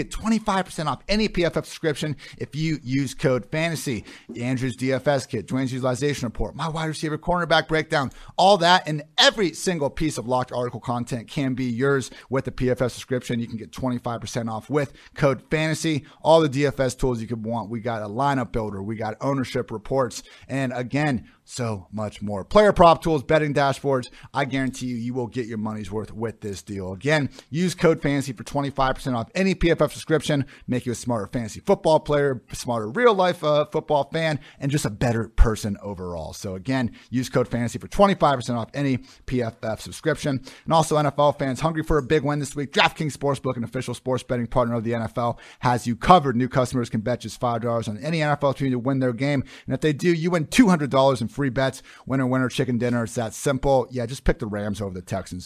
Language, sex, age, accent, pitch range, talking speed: English, male, 30-49, American, 120-150 Hz, 200 wpm